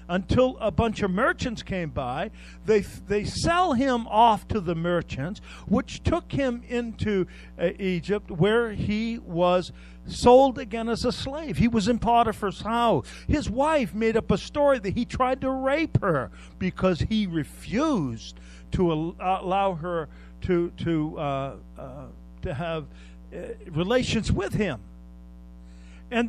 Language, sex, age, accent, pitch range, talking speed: English, male, 50-69, American, 140-235 Hz, 145 wpm